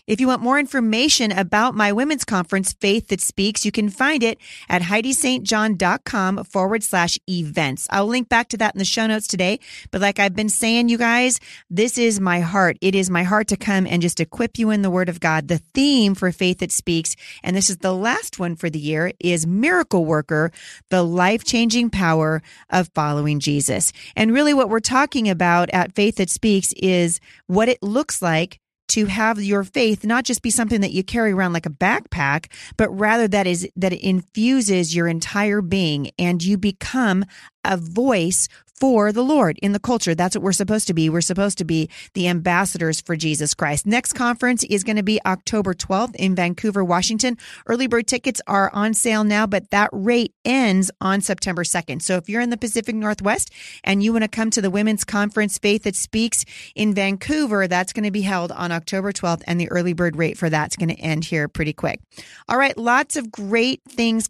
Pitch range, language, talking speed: 180-225 Hz, English, 200 wpm